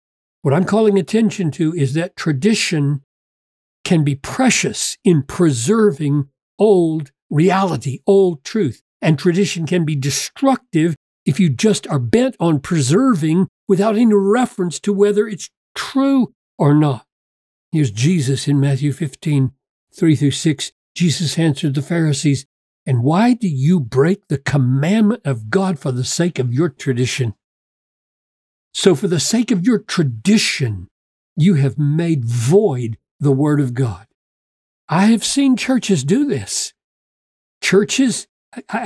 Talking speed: 135 wpm